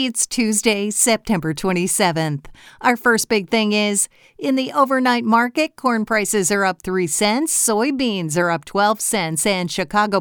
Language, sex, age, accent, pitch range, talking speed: English, female, 50-69, American, 180-225 Hz, 155 wpm